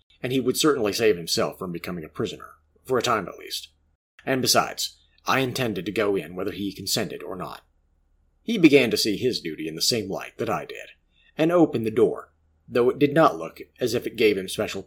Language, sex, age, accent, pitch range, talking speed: English, male, 40-59, American, 75-125 Hz, 220 wpm